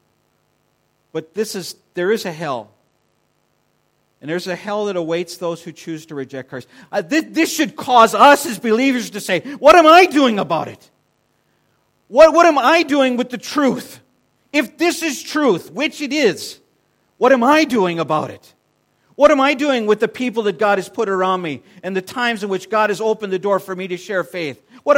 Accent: American